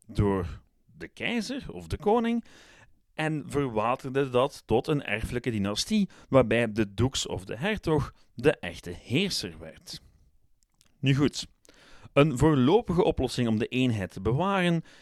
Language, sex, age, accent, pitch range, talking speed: Dutch, male, 40-59, Dutch, 105-155 Hz, 130 wpm